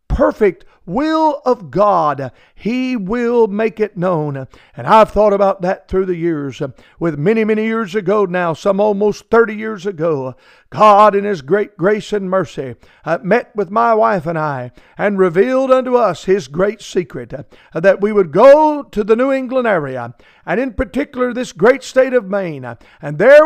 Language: English